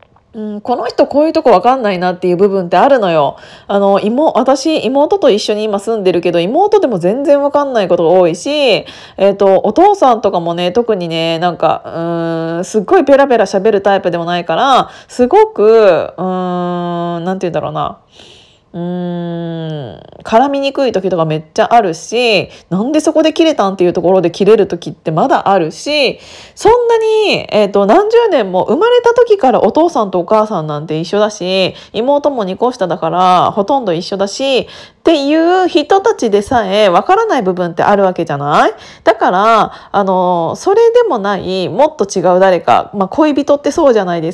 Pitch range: 180-275 Hz